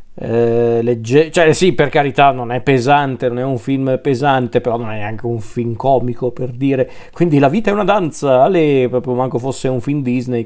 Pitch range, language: 120-150 Hz, Italian